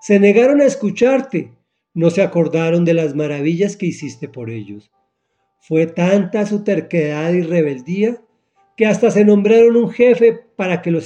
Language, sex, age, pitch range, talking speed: Spanish, male, 40-59, 145-205 Hz, 155 wpm